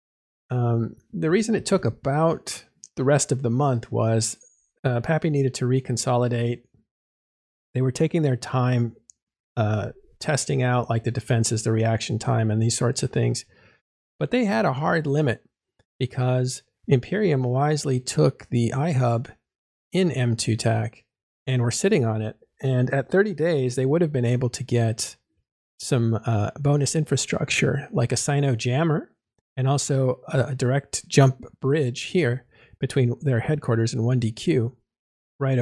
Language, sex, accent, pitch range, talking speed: English, male, American, 115-150 Hz, 145 wpm